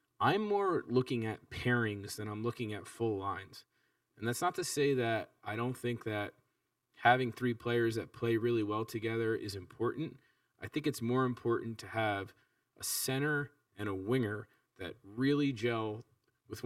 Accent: American